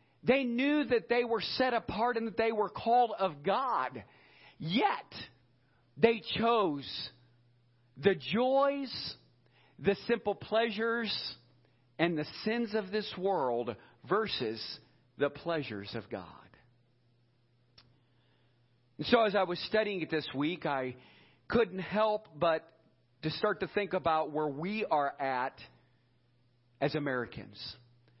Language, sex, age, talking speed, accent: English, male, 50-69, 120 wpm, American